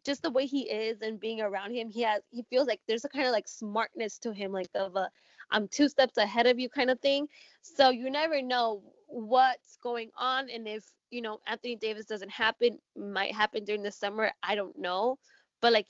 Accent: American